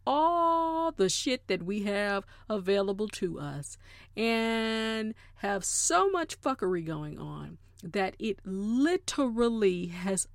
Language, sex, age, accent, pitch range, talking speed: English, female, 40-59, American, 175-255 Hz, 115 wpm